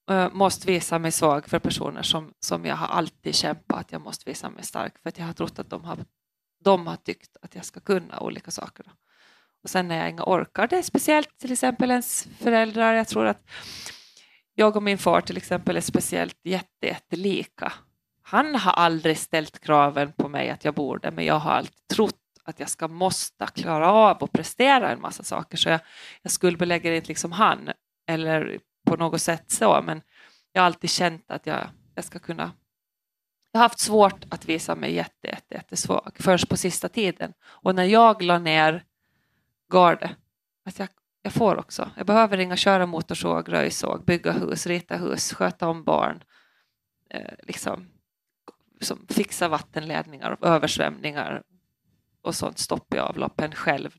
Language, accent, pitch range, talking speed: Finnish, Swedish, 165-205 Hz, 180 wpm